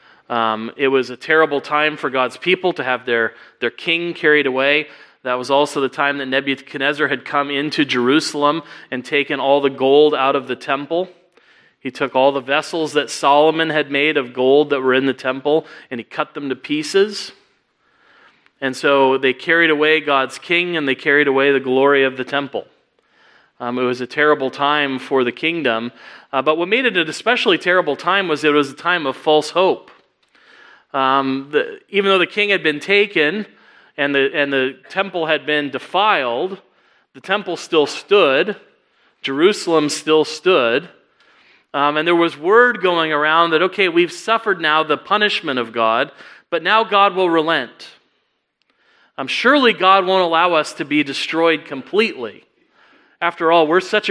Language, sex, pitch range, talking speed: English, male, 135-170 Hz, 175 wpm